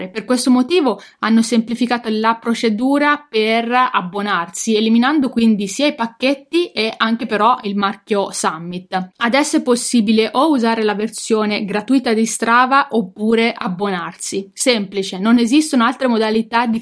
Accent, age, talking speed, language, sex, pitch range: native, 20-39, 135 wpm, Italian, female, 210-250 Hz